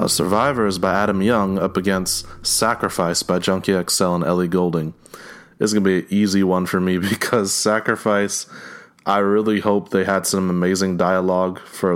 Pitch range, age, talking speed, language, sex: 90-110 Hz, 20-39, 170 wpm, English, male